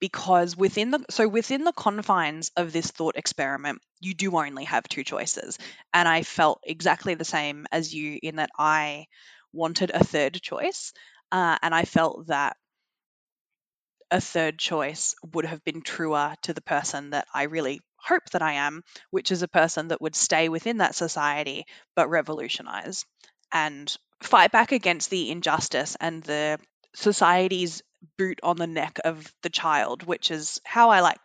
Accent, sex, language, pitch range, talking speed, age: Australian, female, English, 155-205 Hz, 165 wpm, 20-39